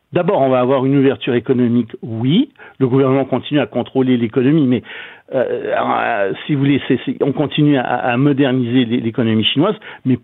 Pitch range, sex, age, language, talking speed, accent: 125-160 Hz, male, 60-79, French, 175 wpm, French